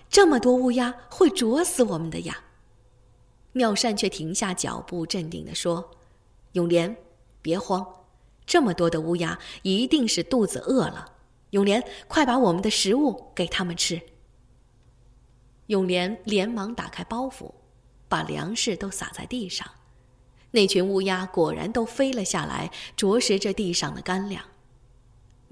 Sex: female